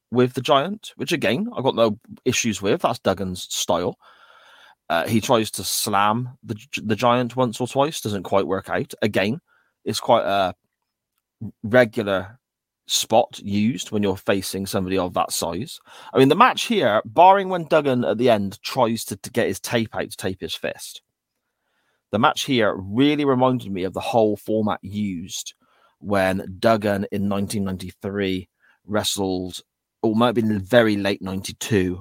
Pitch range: 95-115 Hz